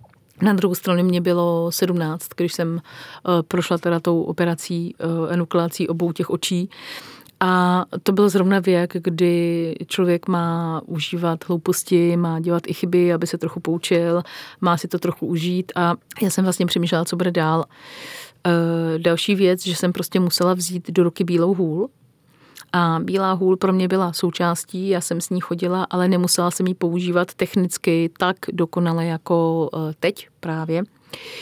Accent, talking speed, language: native, 160 wpm, Czech